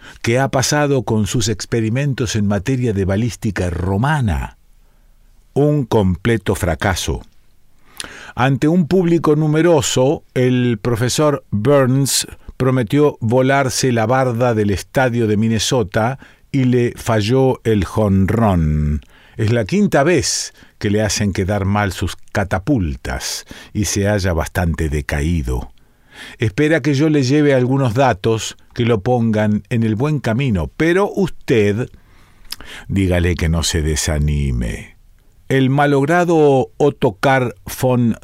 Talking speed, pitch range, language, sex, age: 120 wpm, 105-135 Hz, Spanish, male, 50-69